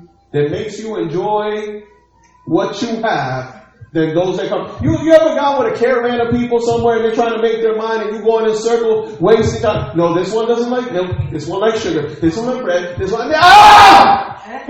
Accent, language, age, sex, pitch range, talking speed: American, English, 30-49, male, 160-240 Hz, 230 wpm